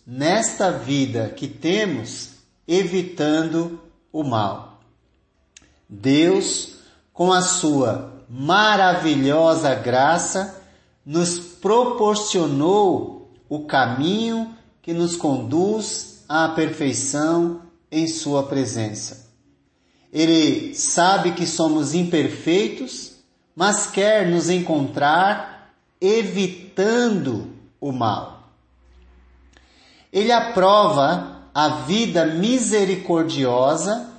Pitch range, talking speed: 140-200 Hz, 75 wpm